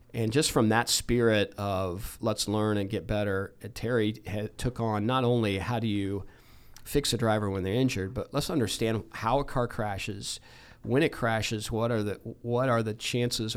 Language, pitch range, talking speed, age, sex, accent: English, 100-115 Hz, 190 wpm, 40-59, male, American